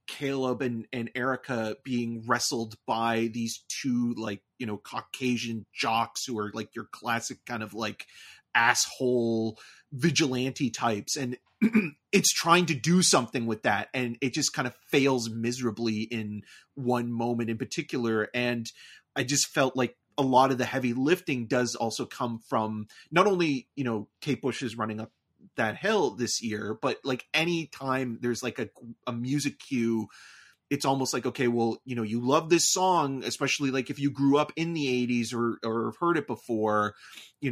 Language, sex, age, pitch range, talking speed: English, male, 30-49, 115-140 Hz, 175 wpm